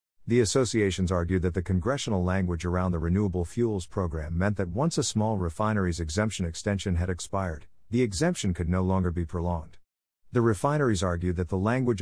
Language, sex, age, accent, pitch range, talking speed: English, male, 50-69, American, 90-115 Hz, 175 wpm